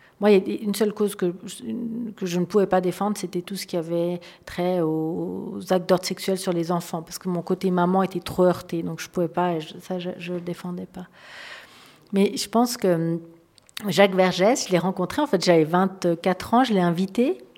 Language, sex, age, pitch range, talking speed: French, female, 50-69, 175-200 Hz, 220 wpm